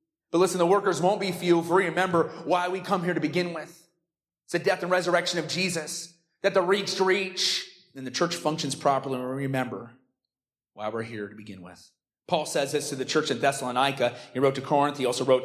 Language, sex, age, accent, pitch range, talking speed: English, male, 30-49, American, 145-210 Hz, 225 wpm